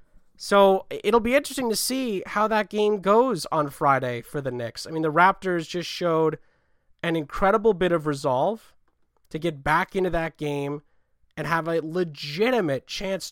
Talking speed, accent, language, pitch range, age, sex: 165 wpm, American, English, 145-200 Hz, 30-49, male